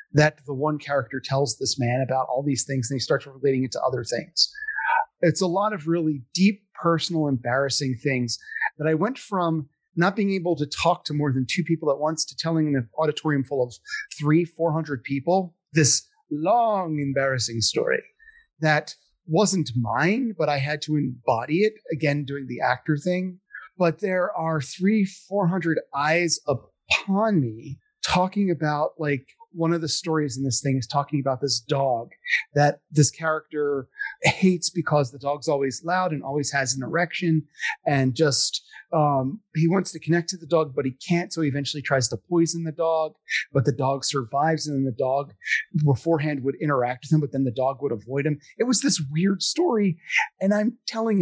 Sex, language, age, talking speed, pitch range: male, English, 30-49, 185 wpm, 140-185 Hz